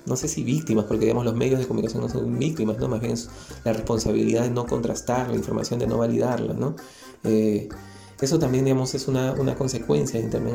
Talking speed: 215 wpm